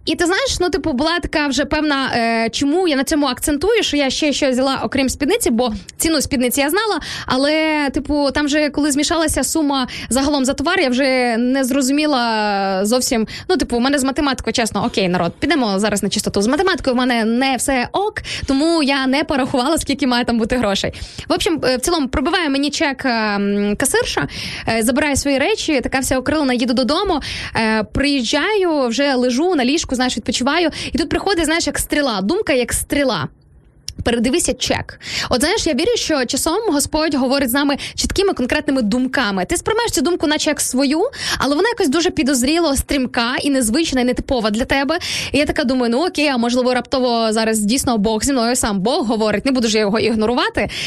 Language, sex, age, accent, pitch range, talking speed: Ukrainian, female, 20-39, native, 250-310 Hz, 190 wpm